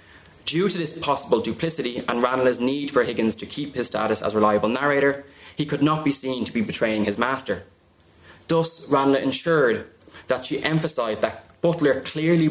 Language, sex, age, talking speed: English, male, 20-39, 175 wpm